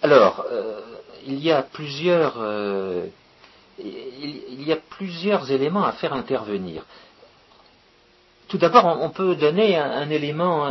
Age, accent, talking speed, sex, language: 50-69, French, 135 wpm, male, French